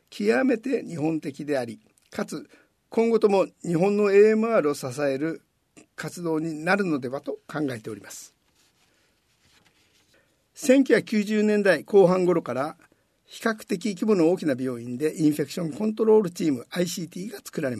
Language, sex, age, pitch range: Japanese, male, 50-69, 150-215 Hz